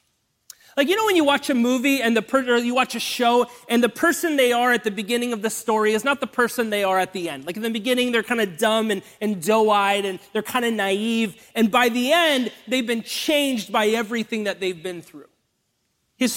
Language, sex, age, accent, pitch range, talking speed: English, male, 30-49, American, 210-255 Hz, 240 wpm